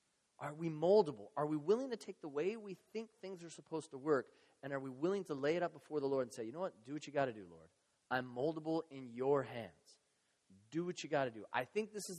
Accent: American